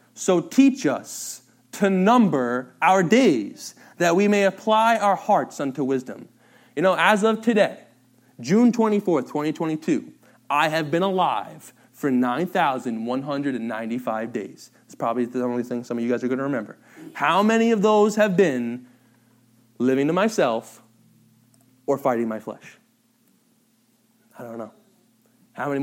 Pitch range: 120-185 Hz